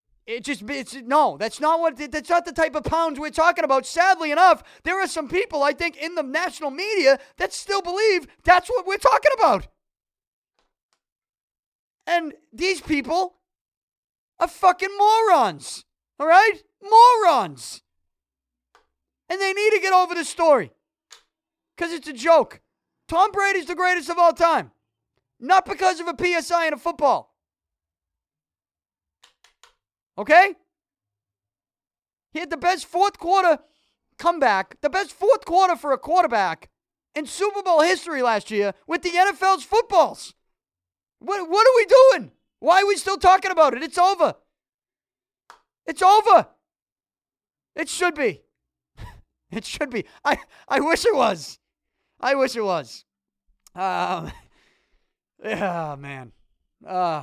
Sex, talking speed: male, 140 wpm